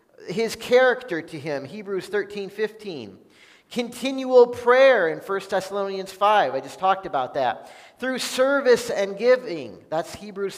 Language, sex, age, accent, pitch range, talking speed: English, male, 40-59, American, 175-225 Hz, 135 wpm